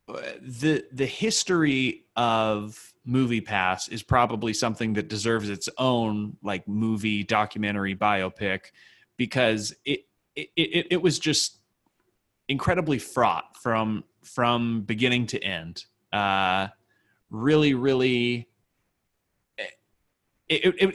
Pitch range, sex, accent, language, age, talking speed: 110-130 Hz, male, American, English, 30-49, 105 wpm